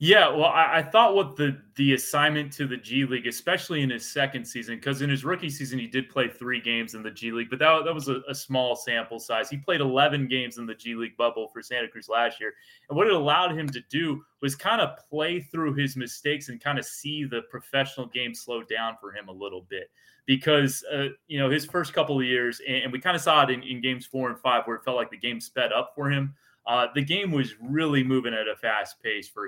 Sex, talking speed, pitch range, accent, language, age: male, 255 wpm, 115-145 Hz, American, English, 20-39